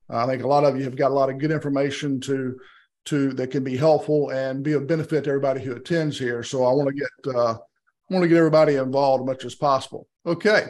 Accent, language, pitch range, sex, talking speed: American, English, 135-165 Hz, male, 250 wpm